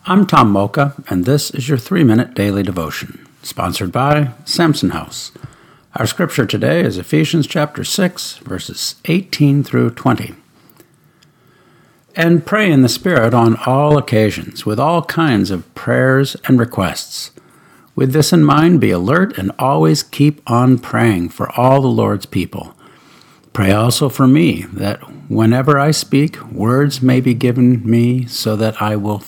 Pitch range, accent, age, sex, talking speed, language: 105-145 Hz, American, 60-79, male, 150 wpm, English